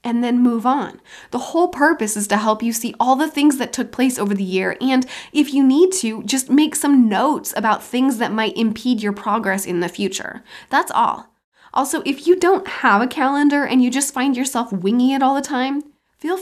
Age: 20-39